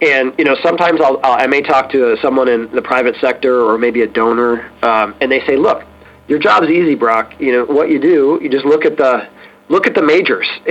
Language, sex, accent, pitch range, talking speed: English, male, American, 120-160 Hz, 235 wpm